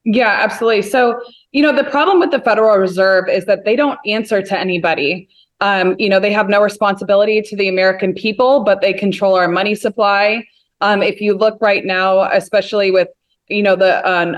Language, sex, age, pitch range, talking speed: English, female, 20-39, 185-215 Hz, 195 wpm